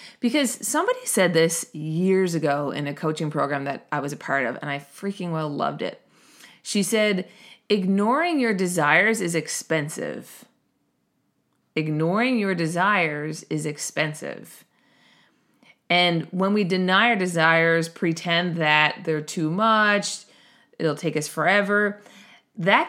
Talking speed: 130 wpm